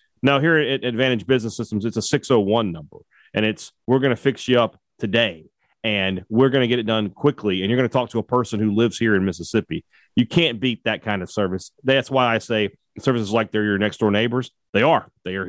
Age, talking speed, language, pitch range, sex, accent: 40-59, 240 wpm, English, 110-145 Hz, male, American